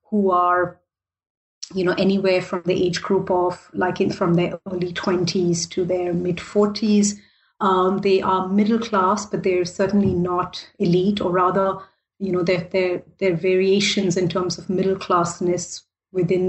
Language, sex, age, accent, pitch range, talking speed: English, female, 30-49, Indian, 180-210 Hz, 155 wpm